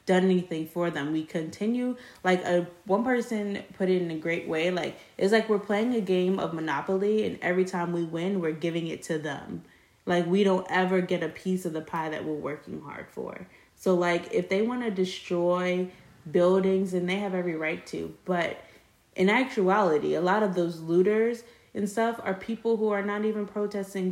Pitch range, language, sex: 175-205 Hz, English, female